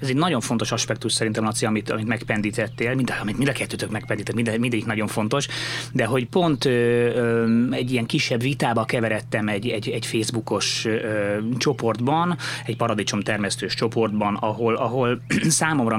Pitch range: 105-130 Hz